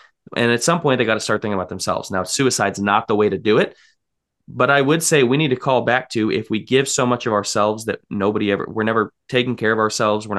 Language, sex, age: English, male, 20-39